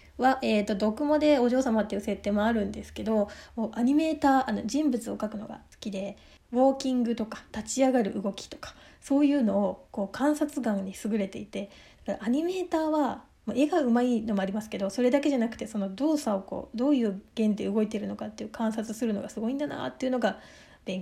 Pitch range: 210-265 Hz